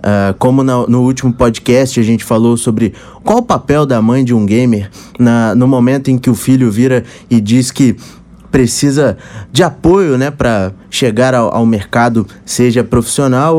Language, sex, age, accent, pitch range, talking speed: Portuguese, male, 20-39, Brazilian, 125-175 Hz, 170 wpm